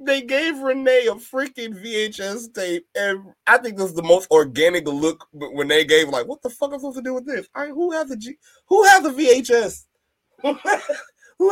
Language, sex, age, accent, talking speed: English, male, 20-39, American, 215 wpm